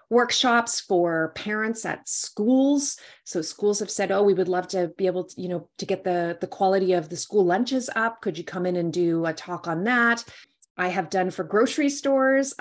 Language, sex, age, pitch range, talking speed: English, female, 30-49, 175-220 Hz, 215 wpm